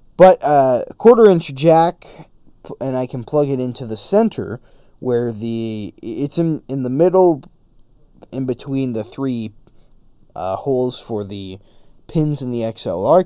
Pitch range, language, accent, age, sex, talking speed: 115-165 Hz, English, American, 20-39, male, 145 wpm